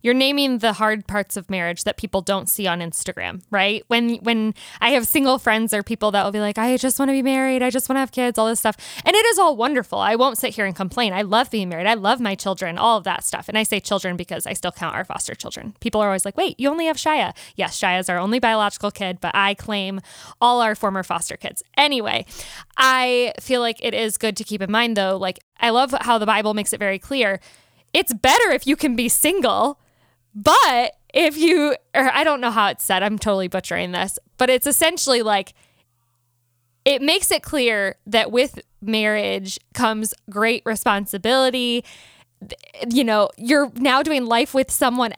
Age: 10-29